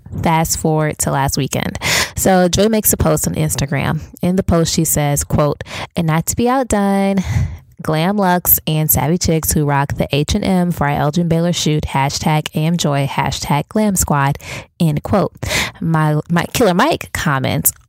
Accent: American